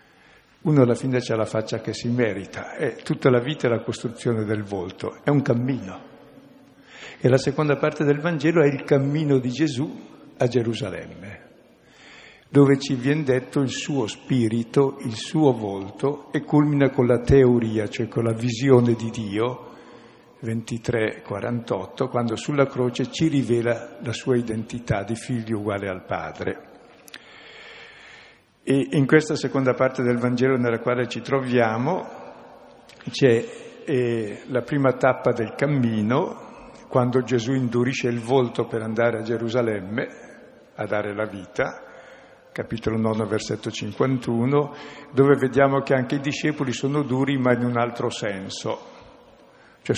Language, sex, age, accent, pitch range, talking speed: Italian, male, 60-79, native, 115-140 Hz, 140 wpm